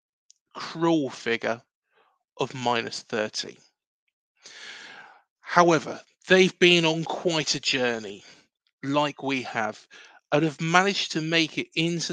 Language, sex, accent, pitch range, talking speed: English, male, British, 135-175 Hz, 110 wpm